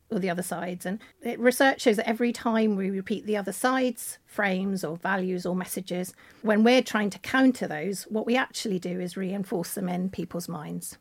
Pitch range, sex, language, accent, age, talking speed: 180-225 Hz, female, English, British, 40-59, 195 wpm